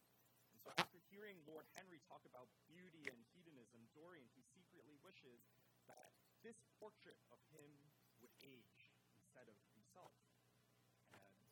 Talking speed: 120 wpm